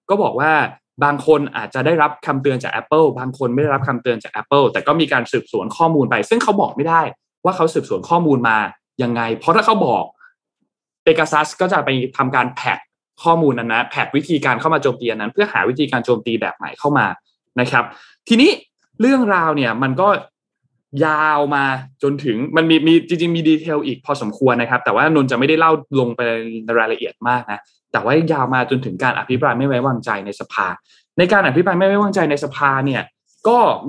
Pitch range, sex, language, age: 125-160 Hz, male, Thai, 20-39